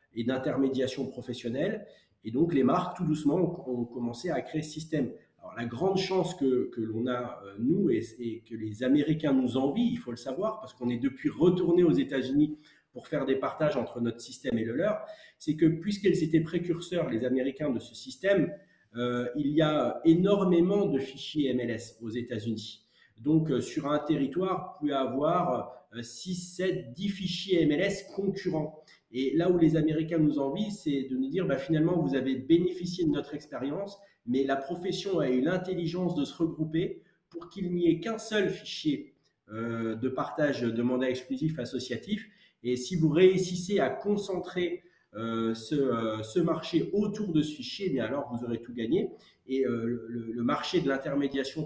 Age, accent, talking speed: 40-59, French, 180 wpm